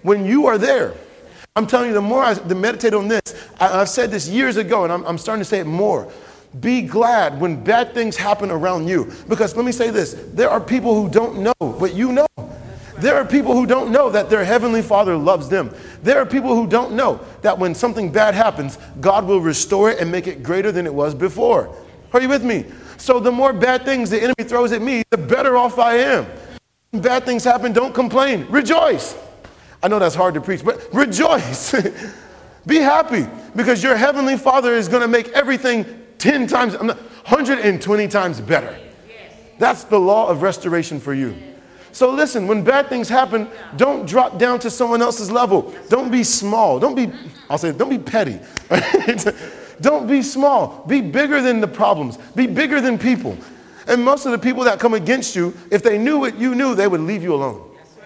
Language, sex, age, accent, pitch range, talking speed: English, male, 40-59, American, 205-255 Hz, 200 wpm